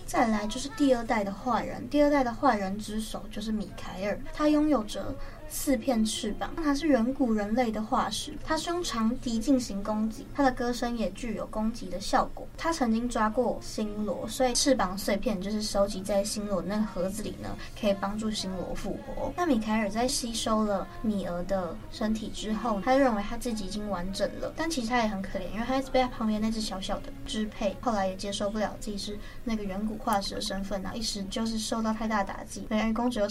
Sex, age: female, 20-39